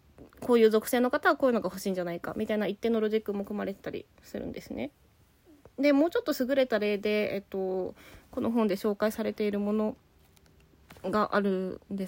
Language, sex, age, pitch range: Japanese, female, 20-39, 190-255 Hz